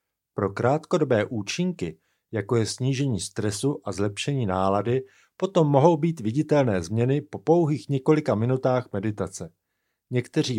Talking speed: 120 wpm